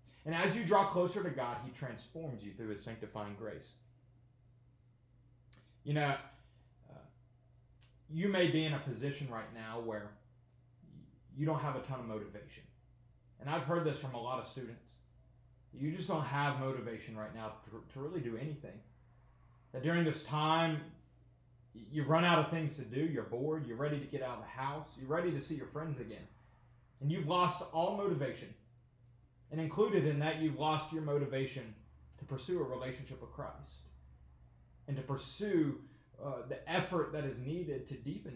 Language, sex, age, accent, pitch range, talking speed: English, male, 30-49, American, 120-155 Hz, 175 wpm